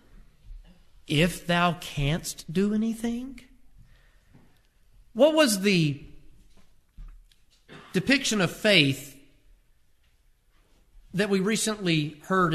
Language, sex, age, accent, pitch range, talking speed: English, male, 50-69, American, 150-235 Hz, 70 wpm